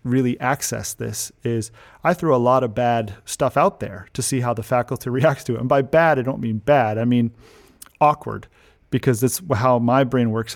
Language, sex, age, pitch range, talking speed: English, male, 40-59, 115-135 Hz, 210 wpm